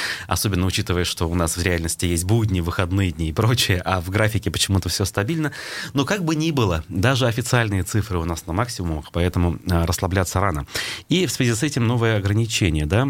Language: Russian